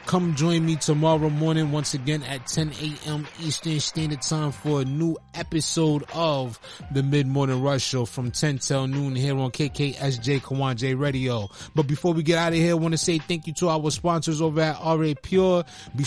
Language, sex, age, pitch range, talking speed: English, male, 20-39, 135-160 Hz, 195 wpm